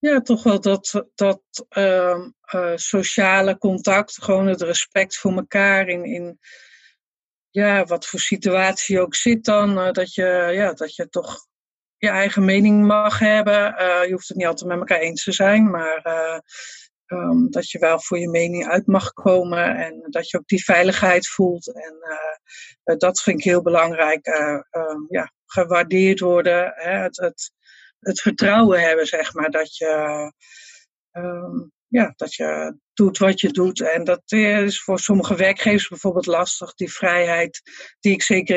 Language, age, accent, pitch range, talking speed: Dutch, 50-69, Dutch, 175-205 Hz, 170 wpm